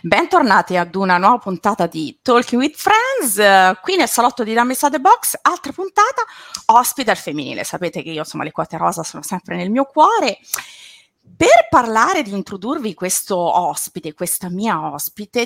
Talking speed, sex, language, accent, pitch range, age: 165 wpm, female, Italian, native, 185-305 Hz, 30-49